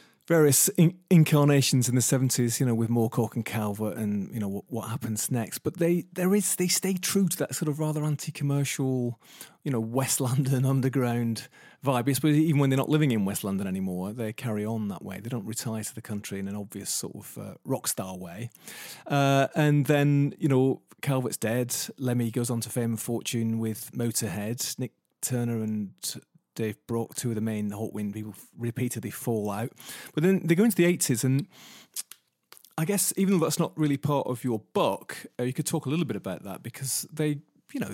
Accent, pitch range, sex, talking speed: British, 110-150 Hz, male, 205 wpm